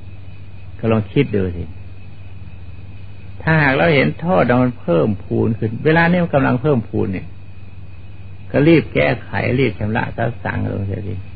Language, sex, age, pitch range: Thai, male, 60-79, 95-125 Hz